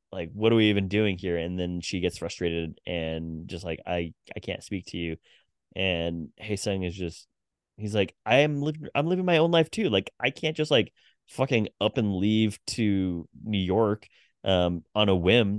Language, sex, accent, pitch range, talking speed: English, male, American, 85-115 Hz, 205 wpm